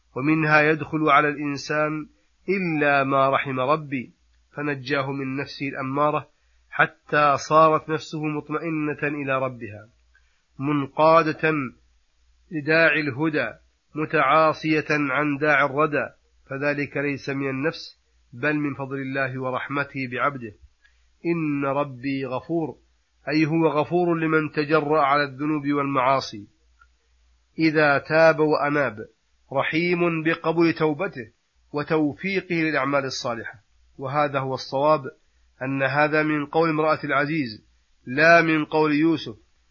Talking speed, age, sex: 105 wpm, 30-49, male